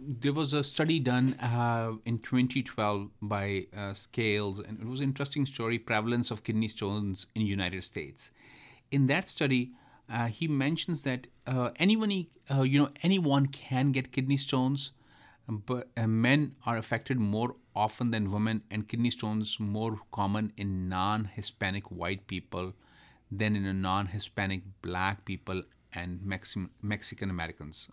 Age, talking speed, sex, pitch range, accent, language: 30-49, 145 wpm, male, 100-130 Hz, Indian, English